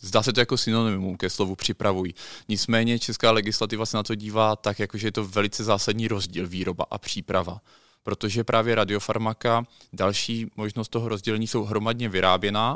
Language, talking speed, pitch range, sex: Czech, 165 wpm, 105-120 Hz, male